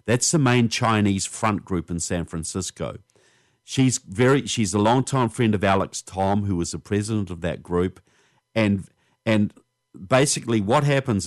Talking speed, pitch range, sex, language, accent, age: 160 wpm, 90-120 Hz, male, English, Australian, 50-69